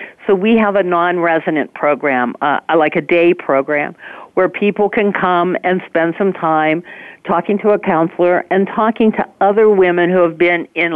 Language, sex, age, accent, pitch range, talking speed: English, female, 50-69, American, 160-205 Hz, 175 wpm